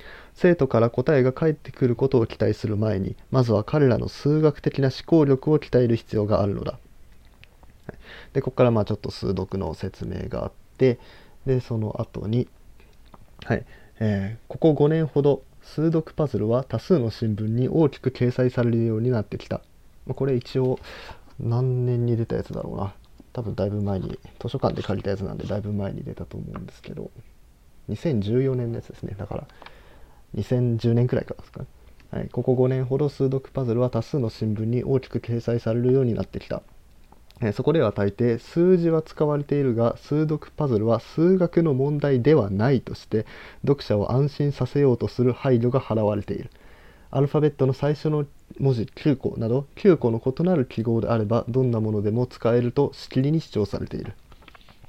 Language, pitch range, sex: Japanese, 105-135 Hz, male